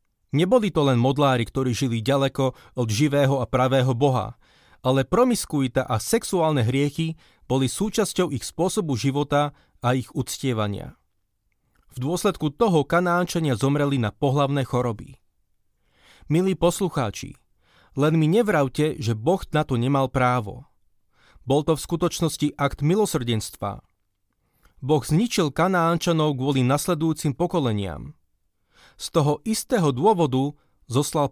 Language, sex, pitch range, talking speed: Slovak, male, 125-170 Hz, 115 wpm